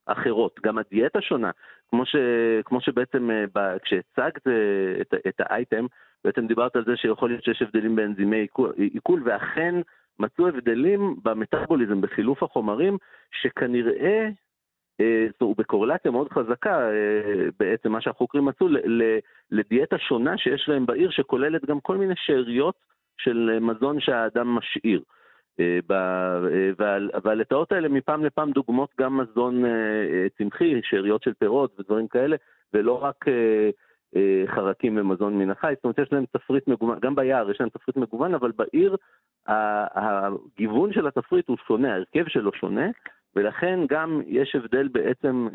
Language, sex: Hebrew, male